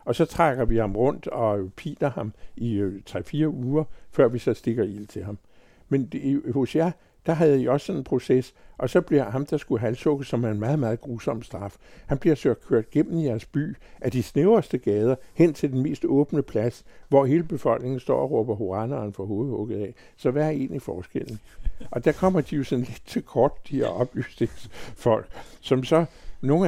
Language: Danish